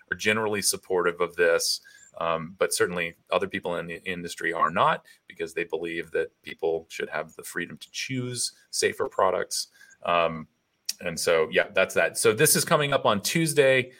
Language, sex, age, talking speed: English, male, 30-49, 175 wpm